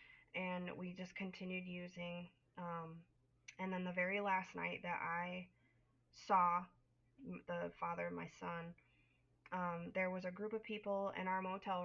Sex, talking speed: female, 150 wpm